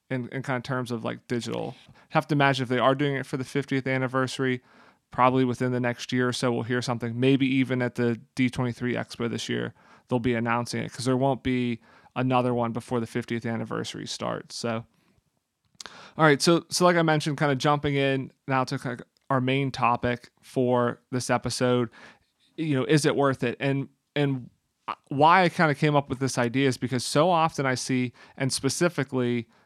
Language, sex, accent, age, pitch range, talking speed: English, male, American, 30-49, 125-140 Hz, 210 wpm